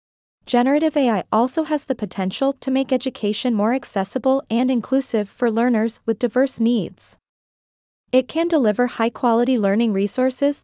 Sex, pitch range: female, 210-260 Hz